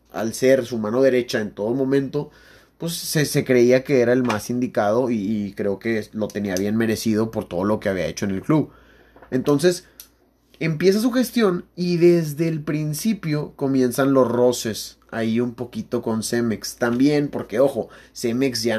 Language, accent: Spanish, Mexican